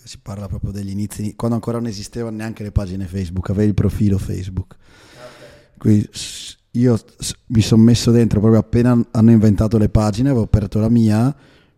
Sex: male